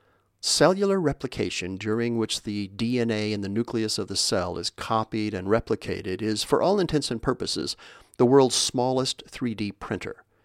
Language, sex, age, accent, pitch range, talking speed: English, male, 40-59, American, 105-125 Hz, 155 wpm